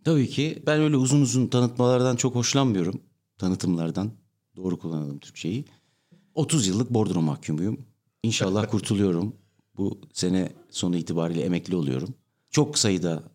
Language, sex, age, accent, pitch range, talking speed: Turkish, male, 60-79, native, 90-125 Hz, 120 wpm